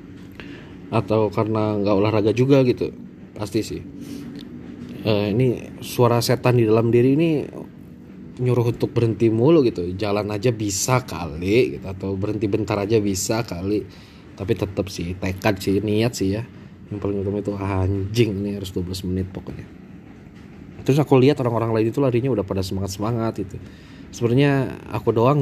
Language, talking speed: Indonesian, 150 wpm